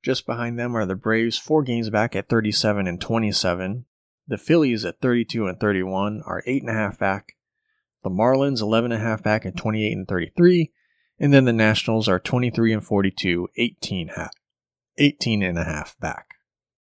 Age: 30-49